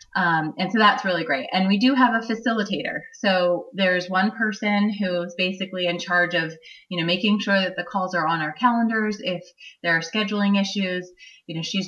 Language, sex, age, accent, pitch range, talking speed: English, female, 30-49, American, 160-195 Hz, 200 wpm